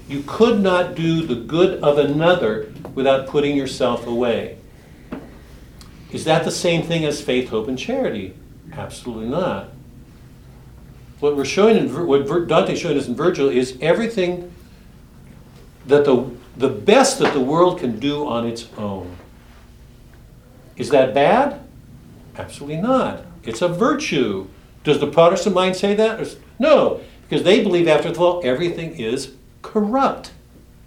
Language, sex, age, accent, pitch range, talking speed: English, male, 60-79, American, 130-180 Hz, 130 wpm